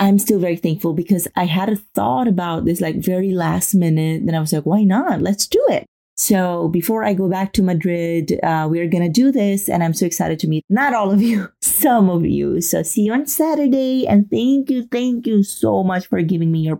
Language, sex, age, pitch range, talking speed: English, female, 30-49, 165-210 Hz, 240 wpm